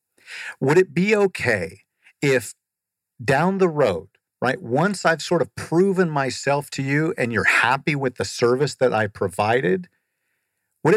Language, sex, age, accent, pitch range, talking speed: English, male, 50-69, American, 120-160 Hz, 150 wpm